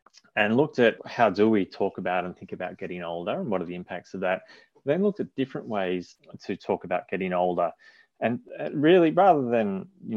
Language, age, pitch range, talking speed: English, 30-49, 95-140 Hz, 205 wpm